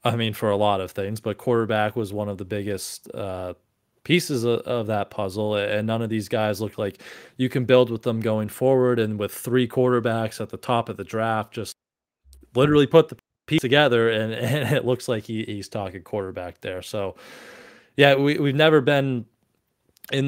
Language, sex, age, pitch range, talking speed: English, male, 20-39, 105-125 Hz, 190 wpm